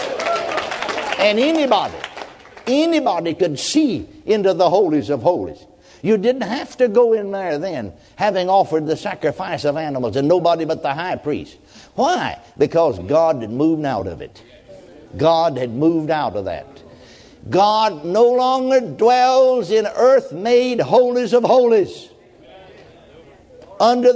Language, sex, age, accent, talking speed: English, male, 60-79, American, 135 wpm